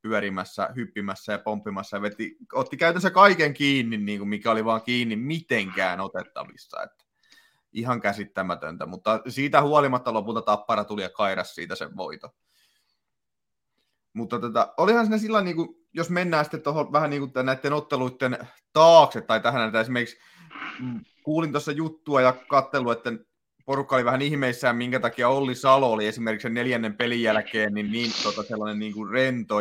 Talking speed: 160 wpm